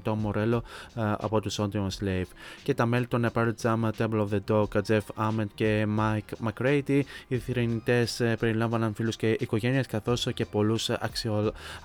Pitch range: 110-125 Hz